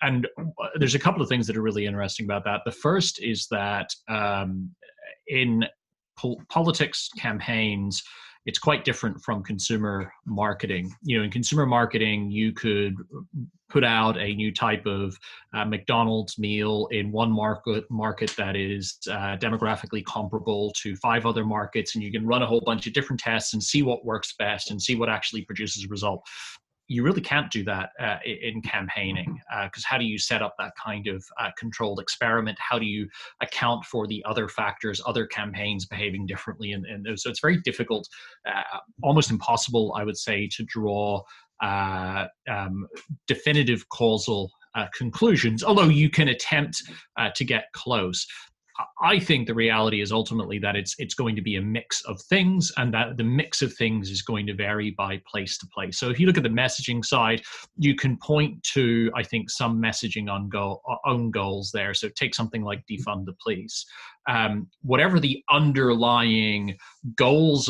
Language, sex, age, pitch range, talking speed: English, male, 30-49, 105-125 Hz, 175 wpm